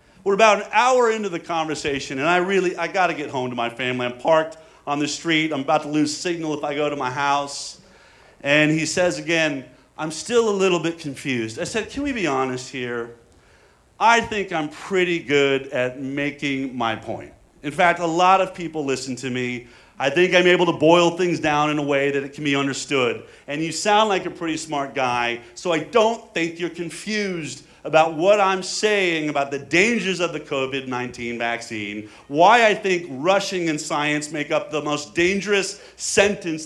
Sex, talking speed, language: male, 200 wpm, English